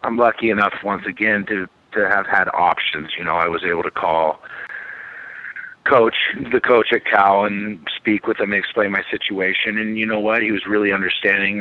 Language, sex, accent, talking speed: English, male, American, 195 wpm